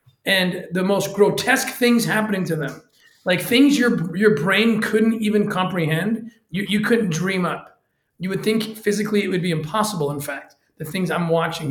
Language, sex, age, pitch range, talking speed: English, male, 40-59, 160-210 Hz, 180 wpm